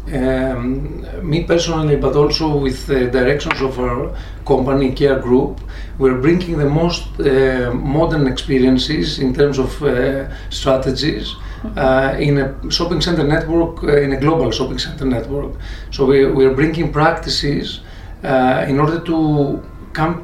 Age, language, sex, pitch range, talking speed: 40-59, Russian, male, 130-155 Hz, 140 wpm